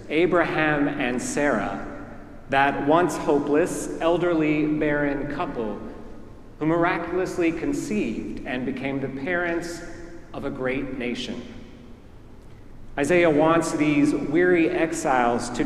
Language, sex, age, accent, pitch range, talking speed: English, male, 40-59, American, 125-175 Hz, 100 wpm